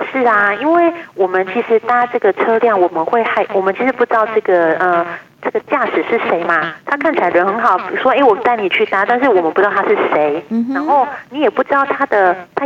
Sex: female